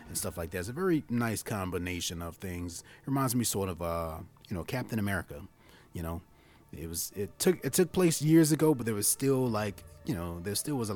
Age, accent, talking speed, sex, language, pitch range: 30-49, American, 235 wpm, male, English, 95-145 Hz